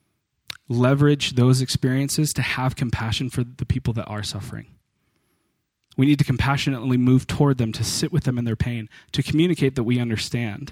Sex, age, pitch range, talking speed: male, 20-39, 110-130 Hz, 175 wpm